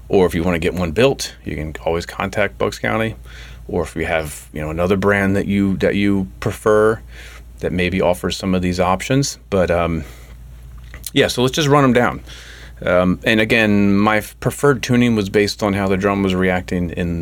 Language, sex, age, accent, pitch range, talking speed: English, male, 30-49, American, 70-100 Hz, 190 wpm